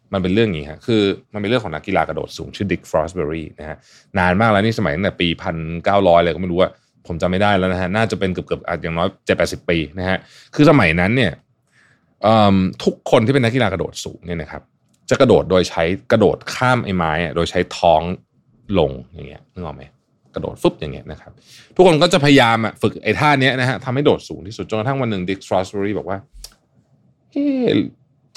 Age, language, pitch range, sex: 20-39, Thai, 90-130 Hz, male